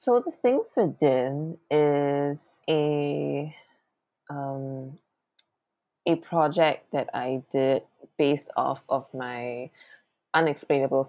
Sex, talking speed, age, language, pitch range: female, 85 wpm, 20-39, English, 130-155 Hz